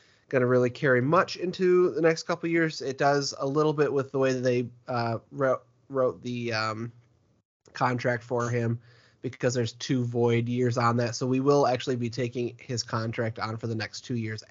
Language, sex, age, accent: English, male, 30-49, American